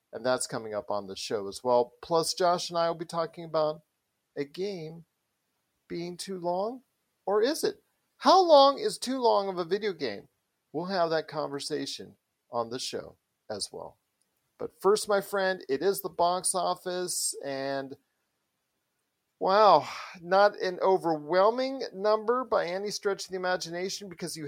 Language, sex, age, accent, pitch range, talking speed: English, male, 40-59, American, 145-185 Hz, 160 wpm